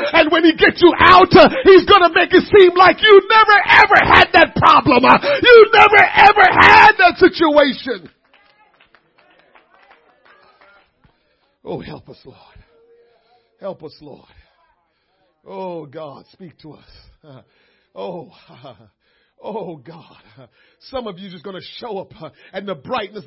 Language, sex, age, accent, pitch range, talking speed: English, male, 50-69, American, 215-355 Hz, 135 wpm